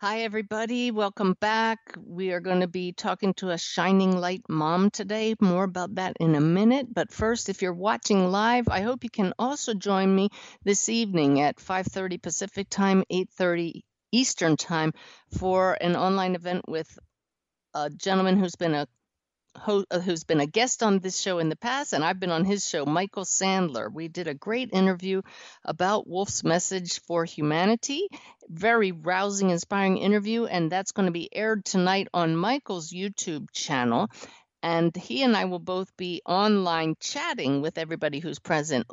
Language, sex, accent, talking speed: English, female, American, 170 wpm